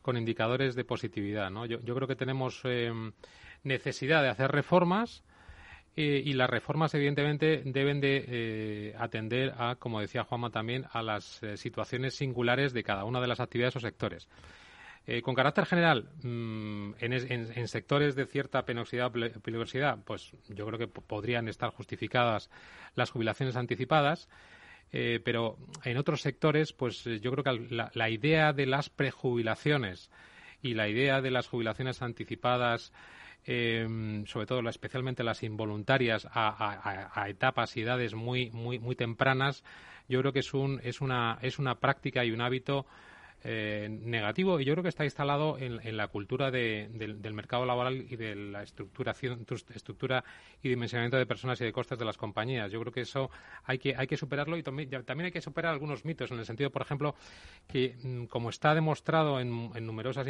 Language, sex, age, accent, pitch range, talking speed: Spanish, male, 30-49, Spanish, 115-135 Hz, 180 wpm